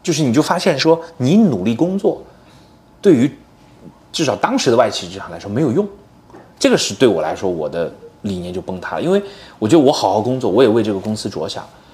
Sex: male